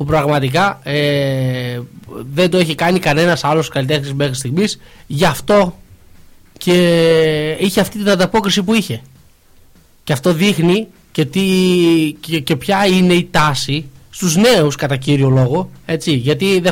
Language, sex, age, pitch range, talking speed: Greek, male, 20-39, 150-190 Hz, 145 wpm